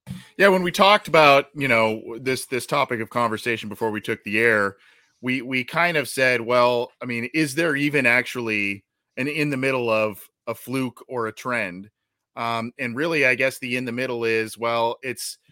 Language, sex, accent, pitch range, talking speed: English, male, American, 120-150 Hz, 195 wpm